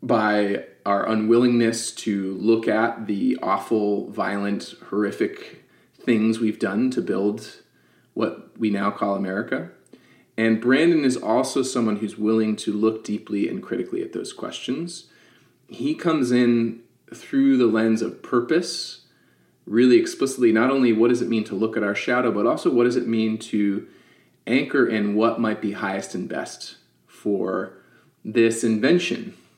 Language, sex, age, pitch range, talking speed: English, male, 30-49, 105-125 Hz, 150 wpm